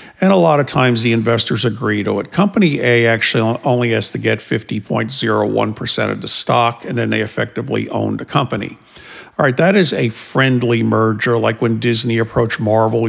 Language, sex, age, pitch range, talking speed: English, male, 50-69, 115-140 Hz, 185 wpm